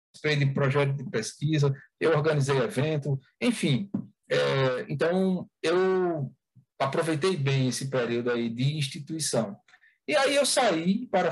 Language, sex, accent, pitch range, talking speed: Portuguese, male, Brazilian, 140-180 Hz, 125 wpm